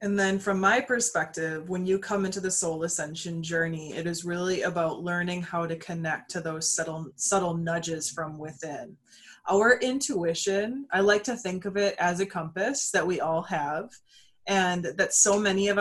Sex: female